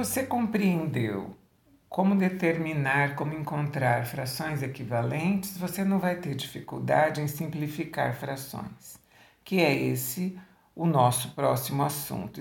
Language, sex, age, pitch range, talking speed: Portuguese, male, 60-79, 135-185 Hz, 110 wpm